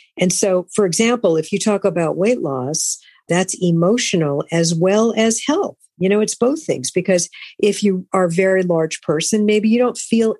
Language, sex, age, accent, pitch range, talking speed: English, female, 50-69, American, 165-210 Hz, 190 wpm